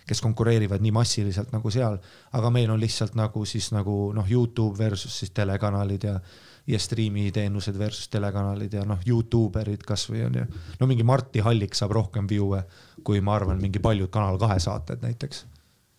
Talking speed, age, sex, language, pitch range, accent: 175 wpm, 30-49, male, English, 105-115 Hz, Finnish